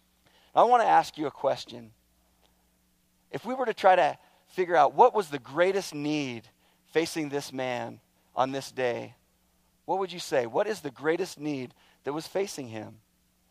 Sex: male